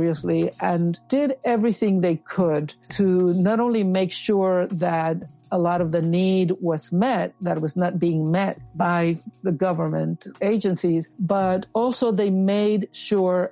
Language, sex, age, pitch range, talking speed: English, female, 60-79, 160-190 Hz, 145 wpm